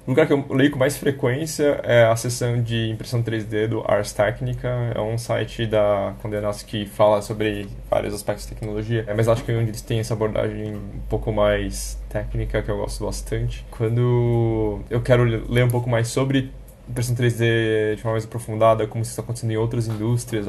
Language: Portuguese